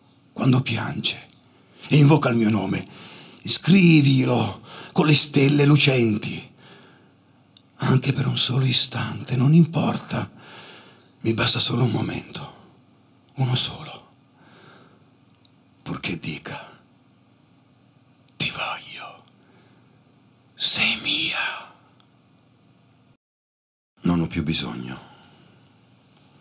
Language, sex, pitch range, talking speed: Italian, male, 85-130 Hz, 80 wpm